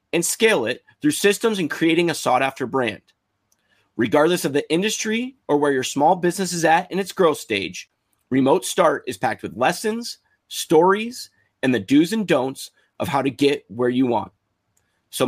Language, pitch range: English, 110-170 Hz